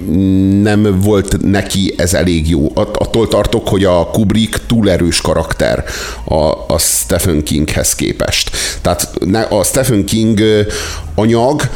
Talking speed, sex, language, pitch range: 125 wpm, male, Hungarian, 95-115 Hz